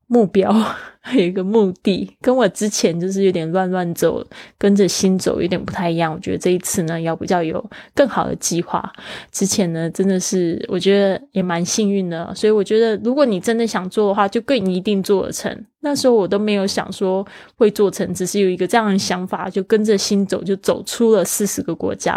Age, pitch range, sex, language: 20-39, 185-215 Hz, female, Chinese